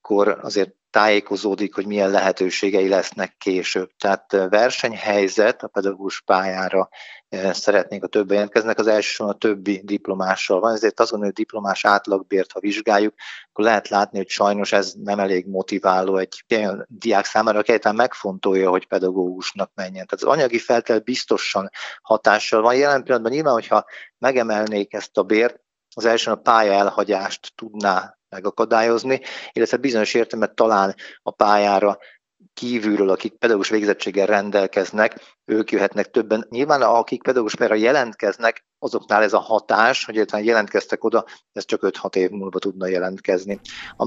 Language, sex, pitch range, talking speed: Hungarian, male, 95-110 Hz, 145 wpm